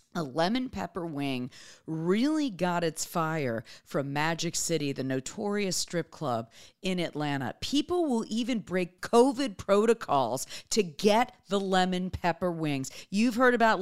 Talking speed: 140 wpm